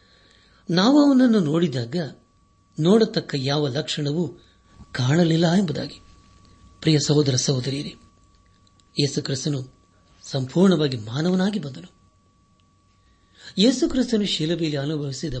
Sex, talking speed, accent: male, 80 wpm, native